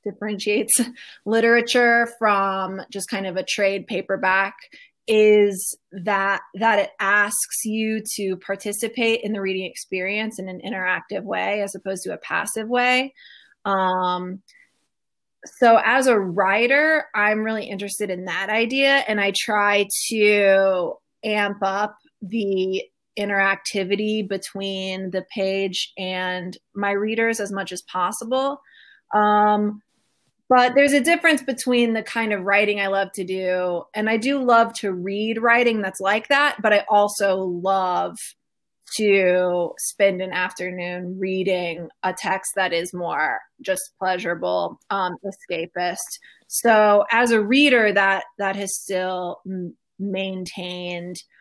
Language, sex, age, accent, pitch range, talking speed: English, female, 20-39, American, 185-220 Hz, 130 wpm